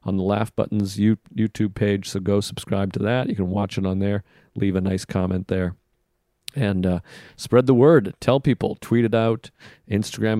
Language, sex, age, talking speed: English, male, 40-59, 190 wpm